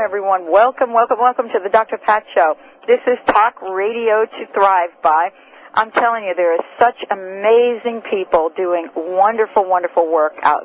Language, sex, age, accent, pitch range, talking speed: English, female, 50-69, American, 165-220 Hz, 165 wpm